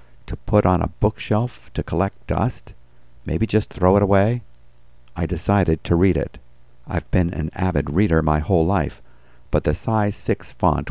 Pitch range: 75-95 Hz